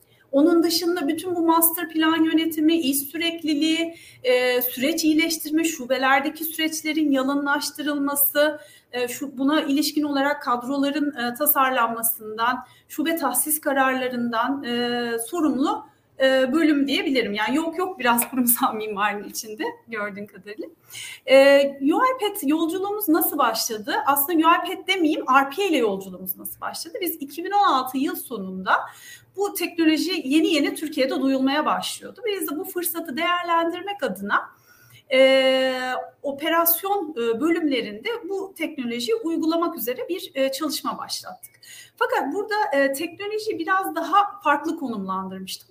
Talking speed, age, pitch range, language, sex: 110 wpm, 40-59, 260-335 Hz, Turkish, female